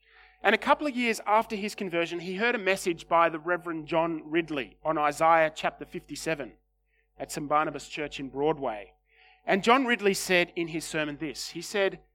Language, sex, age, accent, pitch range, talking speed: English, male, 30-49, Australian, 150-190 Hz, 185 wpm